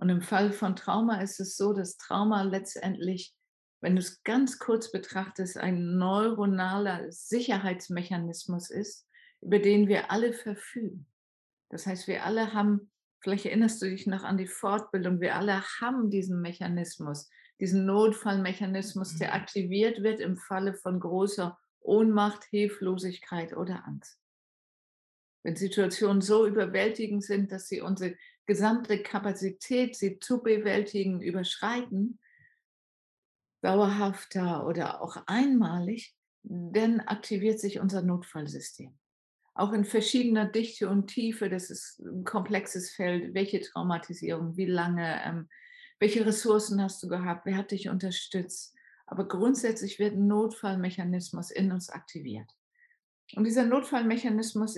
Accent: German